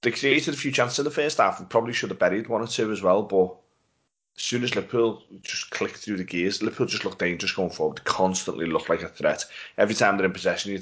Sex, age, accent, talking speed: male, 30-49, British, 260 wpm